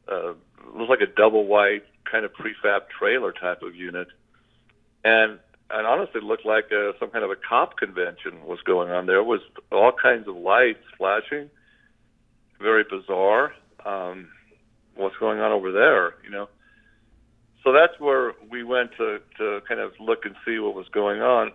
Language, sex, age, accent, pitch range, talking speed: English, male, 50-69, American, 100-170 Hz, 175 wpm